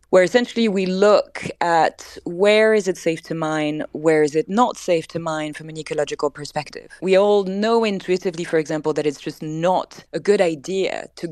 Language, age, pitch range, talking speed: English, 20-39, 155-200 Hz, 190 wpm